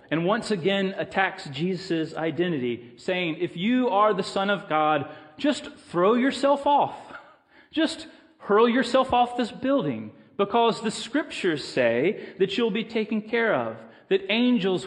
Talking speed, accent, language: 145 wpm, American, English